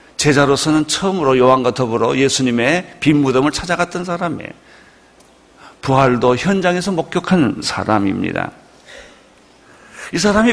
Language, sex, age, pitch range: Korean, male, 50-69, 135-180 Hz